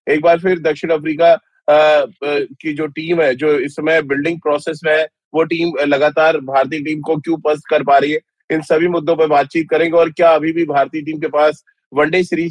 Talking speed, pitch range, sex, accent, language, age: 220 wpm, 150-175 Hz, male, native, Hindi, 30-49